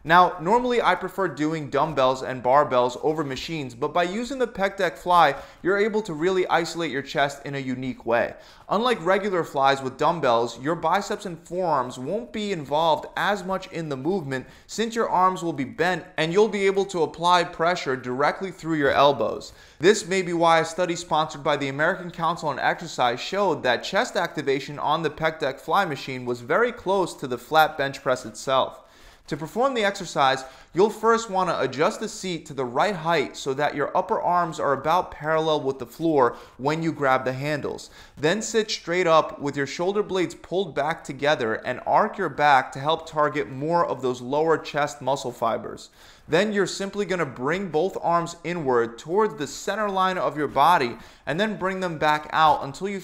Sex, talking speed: male, 195 wpm